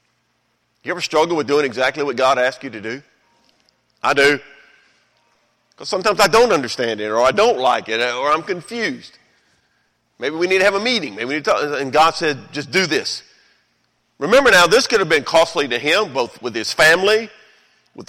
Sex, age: male, 40-59